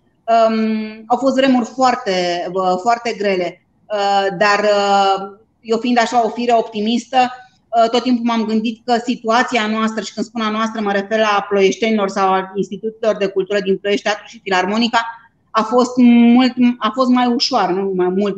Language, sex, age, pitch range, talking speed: Romanian, female, 30-49, 200-225 Hz, 175 wpm